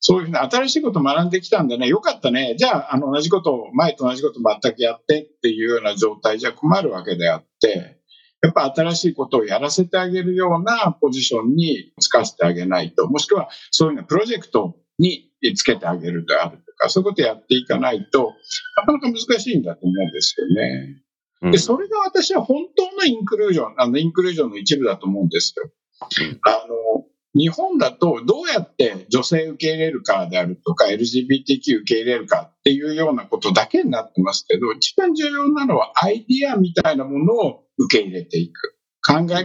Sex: male